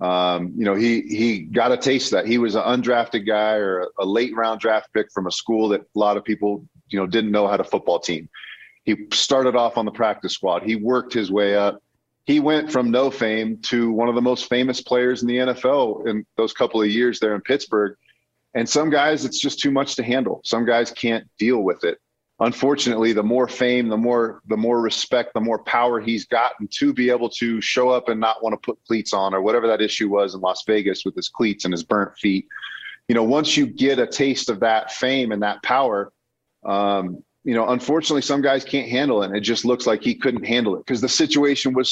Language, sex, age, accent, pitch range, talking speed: English, male, 30-49, American, 110-135 Hz, 235 wpm